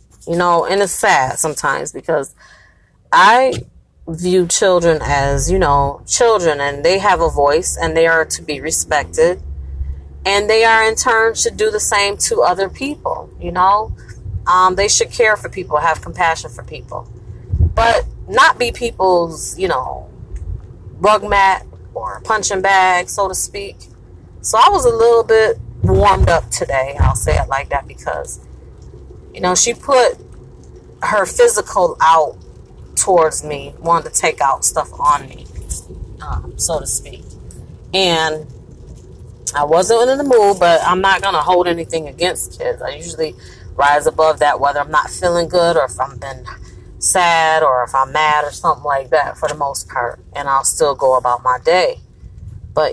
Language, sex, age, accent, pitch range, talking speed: English, female, 30-49, American, 135-200 Hz, 170 wpm